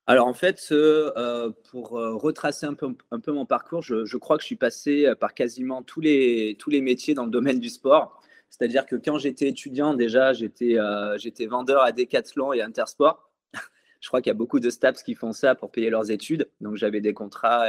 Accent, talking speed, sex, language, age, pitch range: French, 210 wpm, male, French, 20-39, 110-145 Hz